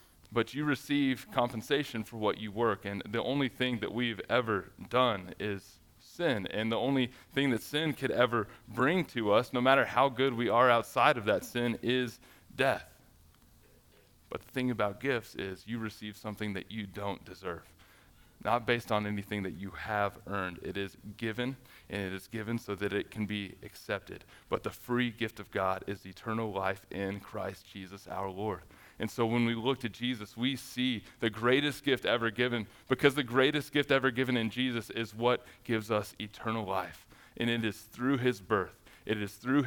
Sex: male